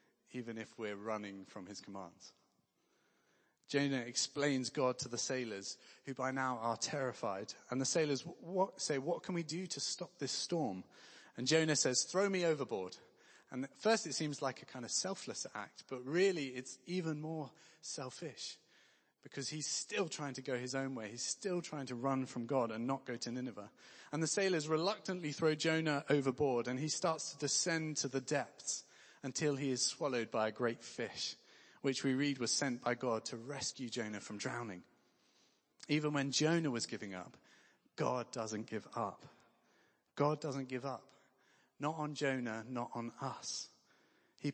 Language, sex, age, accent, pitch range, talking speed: English, male, 30-49, British, 125-155 Hz, 175 wpm